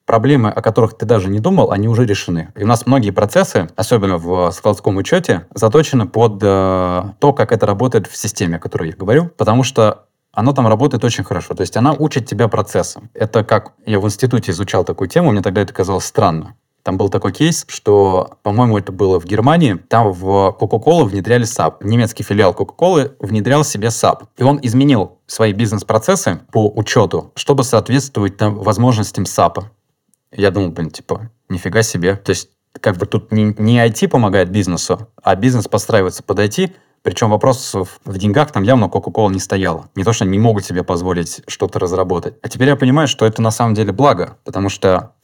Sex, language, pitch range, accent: male, Russian, 100-125 Hz, native